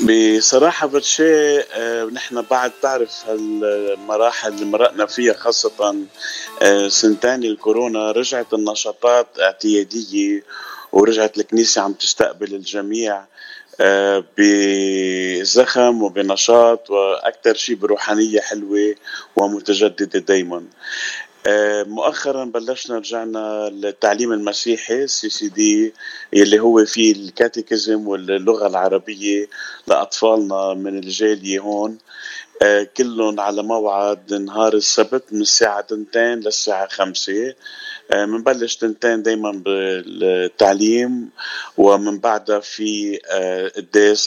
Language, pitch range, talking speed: Arabic, 100-115 Hz, 90 wpm